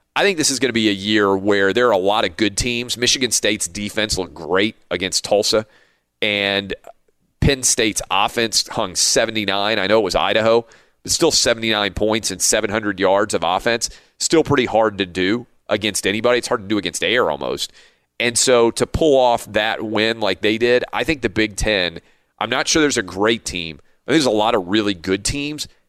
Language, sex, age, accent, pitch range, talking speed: English, male, 40-59, American, 100-120 Hz, 205 wpm